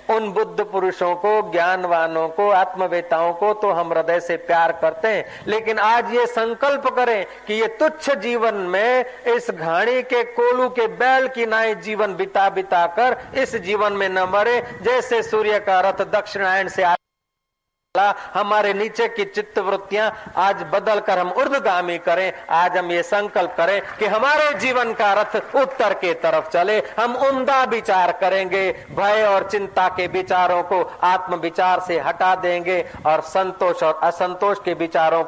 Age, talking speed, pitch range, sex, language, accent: 50-69, 160 wpm, 160-215 Hz, male, Hindi, native